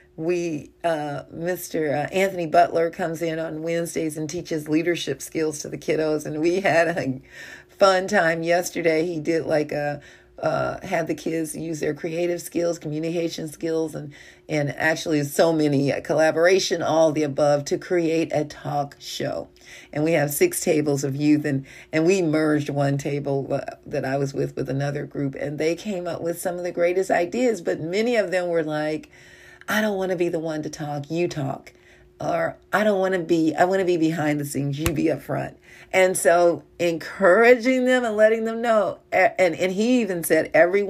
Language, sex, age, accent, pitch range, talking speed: English, female, 40-59, American, 150-180 Hz, 195 wpm